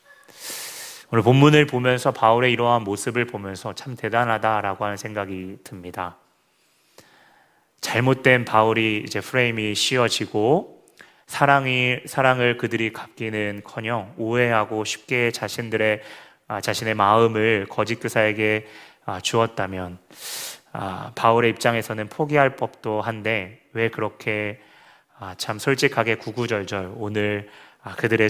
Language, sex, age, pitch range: Korean, male, 30-49, 100-120 Hz